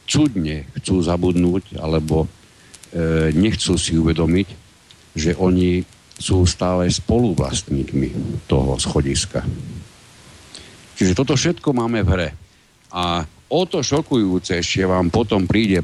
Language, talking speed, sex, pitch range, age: Slovak, 100 wpm, male, 85-105 Hz, 60-79